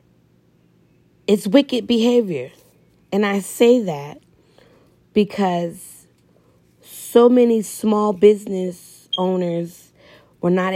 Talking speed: 85 wpm